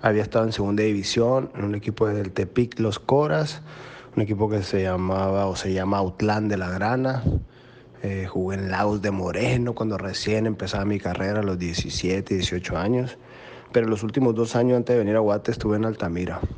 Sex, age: male, 30-49